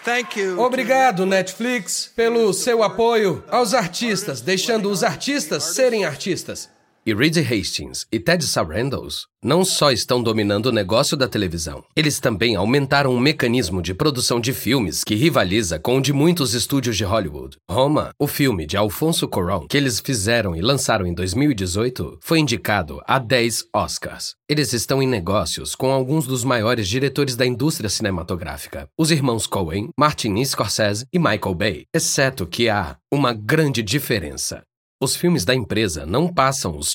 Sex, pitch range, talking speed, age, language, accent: male, 105-150 Hz, 155 wpm, 40-59, Portuguese, Brazilian